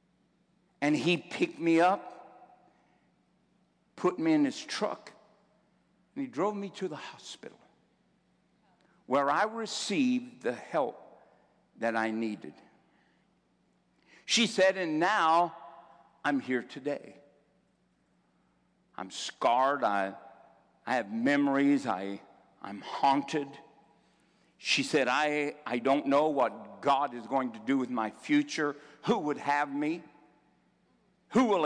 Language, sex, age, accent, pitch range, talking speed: English, male, 60-79, American, 145-220 Hz, 120 wpm